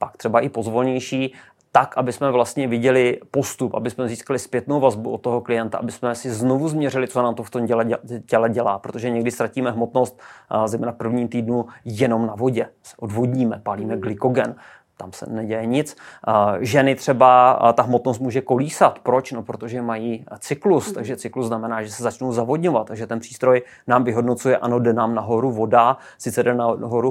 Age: 30-49